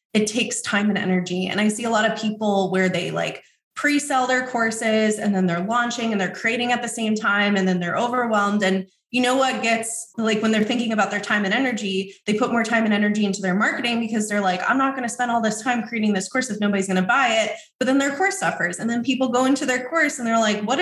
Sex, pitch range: female, 195-240 Hz